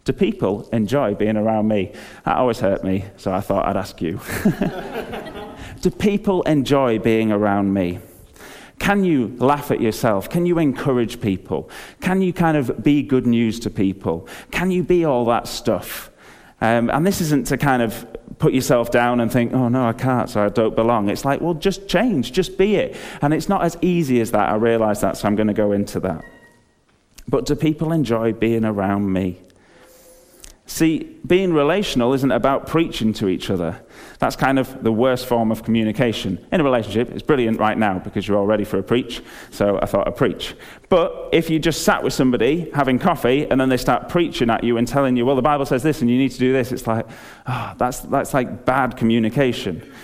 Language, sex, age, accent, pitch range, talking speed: English, male, 30-49, British, 110-150 Hz, 205 wpm